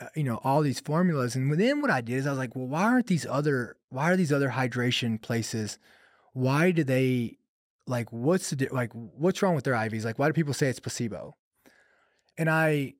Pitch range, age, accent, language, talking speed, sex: 125-170 Hz, 20-39, American, English, 210 wpm, male